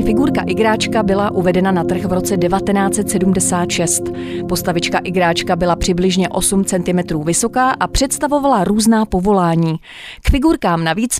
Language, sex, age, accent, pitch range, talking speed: Czech, female, 30-49, native, 180-235 Hz, 125 wpm